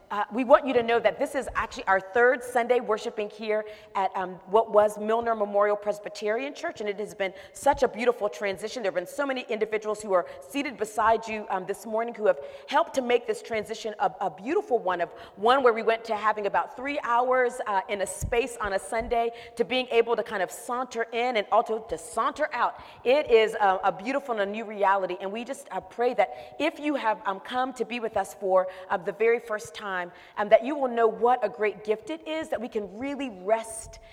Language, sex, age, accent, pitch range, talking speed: English, female, 40-59, American, 195-245 Hz, 230 wpm